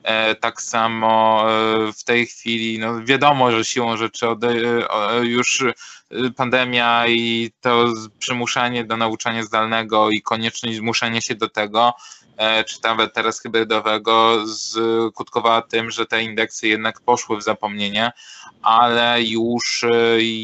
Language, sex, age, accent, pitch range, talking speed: Polish, male, 20-39, native, 110-125 Hz, 115 wpm